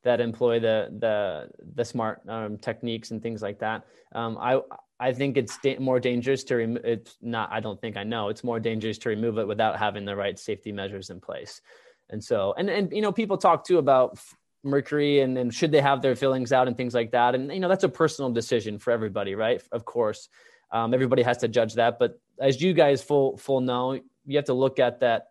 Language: English